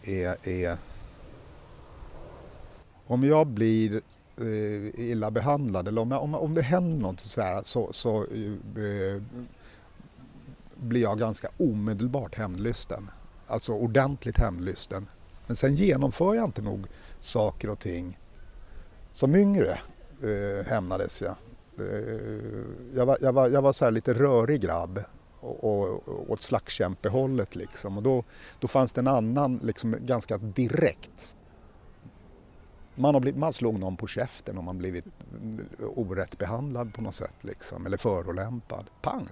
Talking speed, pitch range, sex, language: 135 wpm, 100-130 Hz, male, Swedish